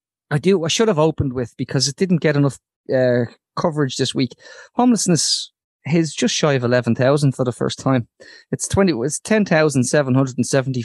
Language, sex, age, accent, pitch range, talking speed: English, male, 20-39, Irish, 130-150 Hz, 200 wpm